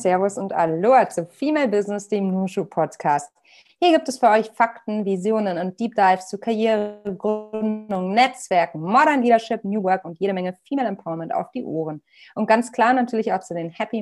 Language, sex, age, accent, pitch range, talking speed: German, female, 30-49, German, 185-235 Hz, 175 wpm